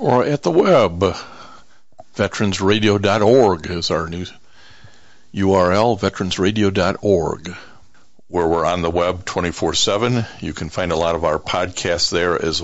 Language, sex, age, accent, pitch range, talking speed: English, male, 60-79, American, 90-110 Hz, 125 wpm